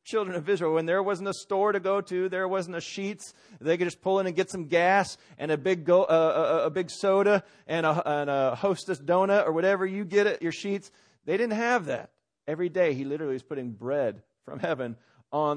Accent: American